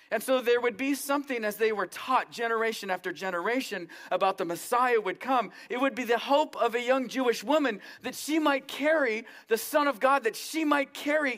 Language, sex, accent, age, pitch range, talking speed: English, male, American, 40-59, 190-265 Hz, 210 wpm